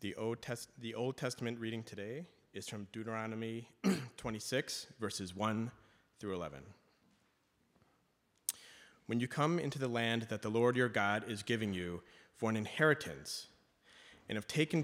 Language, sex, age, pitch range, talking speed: English, male, 30-49, 105-130 Hz, 140 wpm